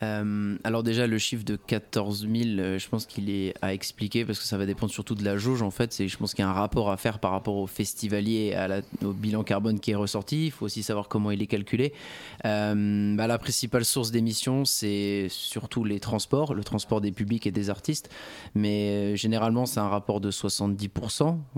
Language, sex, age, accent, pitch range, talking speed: French, male, 20-39, French, 105-125 Hz, 215 wpm